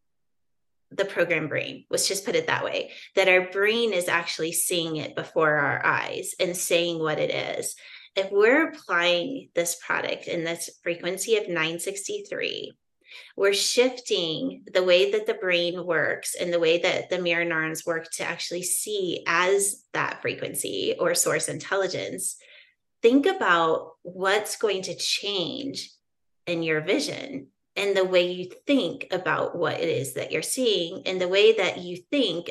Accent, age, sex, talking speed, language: American, 30-49, female, 160 wpm, English